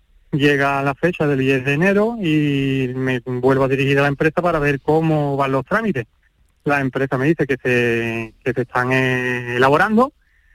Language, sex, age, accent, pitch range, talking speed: Spanish, male, 30-49, Spanish, 135-160 Hz, 175 wpm